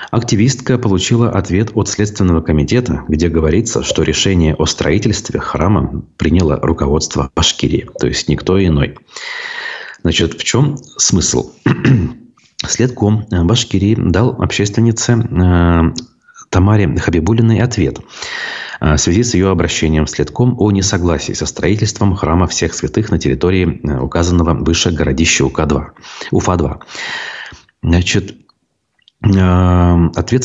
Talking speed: 105 wpm